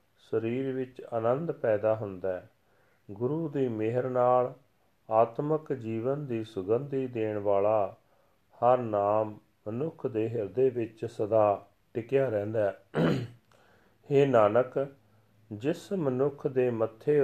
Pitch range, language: 100-125 Hz, Punjabi